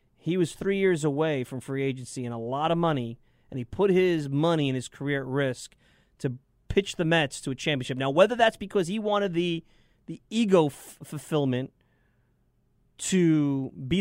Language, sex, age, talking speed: English, male, 30-49, 185 wpm